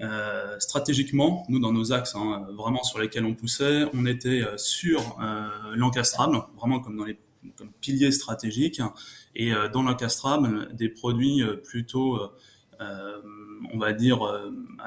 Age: 20-39